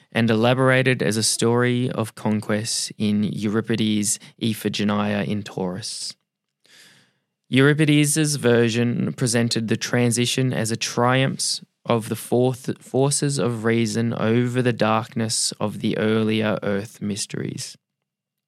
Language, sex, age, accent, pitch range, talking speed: English, male, 20-39, Australian, 110-125 Hz, 110 wpm